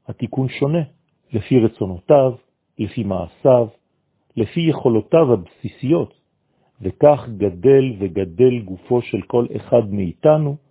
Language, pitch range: French, 100-135 Hz